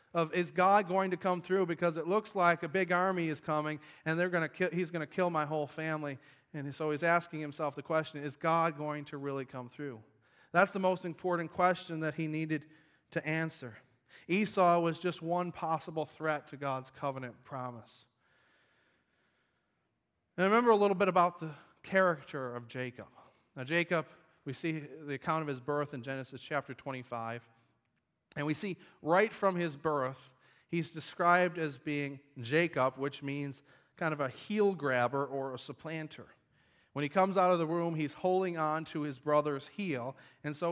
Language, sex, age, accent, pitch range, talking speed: English, male, 30-49, American, 140-175 Hz, 185 wpm